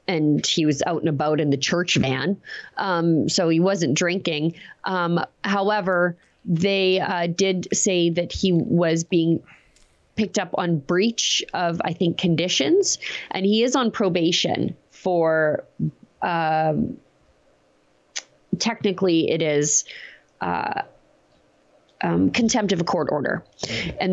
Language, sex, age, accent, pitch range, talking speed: English, female, 30-49, American, 165-210 Hz, 125 wpm